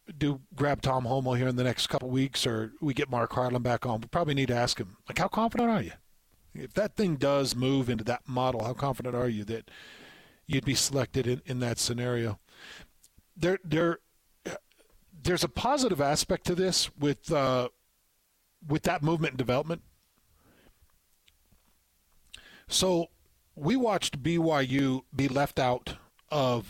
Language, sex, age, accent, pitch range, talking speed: English, male, 50-69, American, 120-155 Hz, 165 wpm